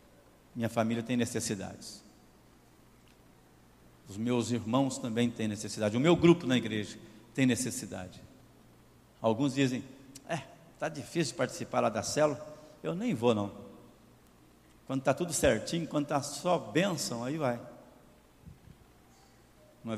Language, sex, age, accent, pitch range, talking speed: Portuguese, male, 60-79, Brazilian, 120-175 Hz, 125 wpm